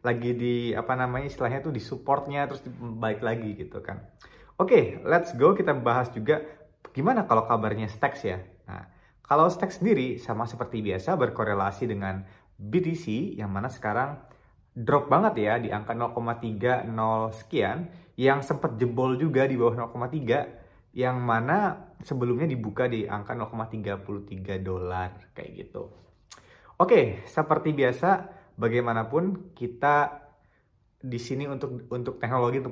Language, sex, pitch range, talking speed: Indonesian, male, 110-140 Hz, 135 wpm